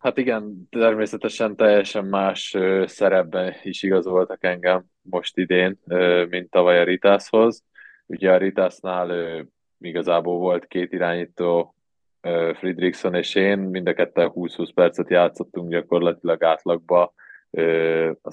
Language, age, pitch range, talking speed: Hungarian, 20-39, 90-100 Hz, 110 wpm